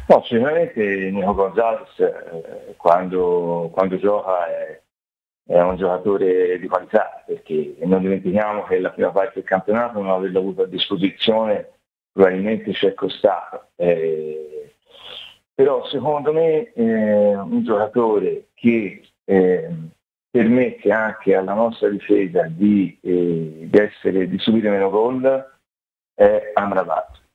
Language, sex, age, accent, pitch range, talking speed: Italian, male, 40-59, native, 95-160 Hz, 115 wpm